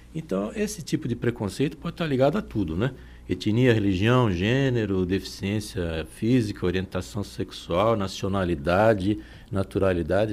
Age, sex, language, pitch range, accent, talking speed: 60-79, male, Portuguese, 95-125 Hz, Brazilian, 115 wpm